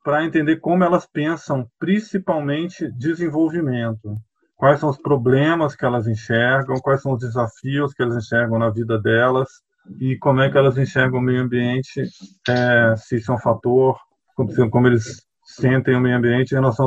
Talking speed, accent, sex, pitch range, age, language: 170 wpm, Brazilian, male, 115-140 Hz, 20-39, Portuguese